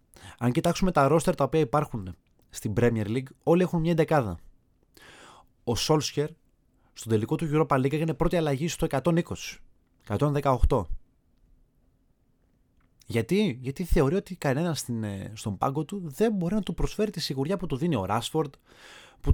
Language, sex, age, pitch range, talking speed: Greek, male, 30-49, 110-170 Hz, 150 wpm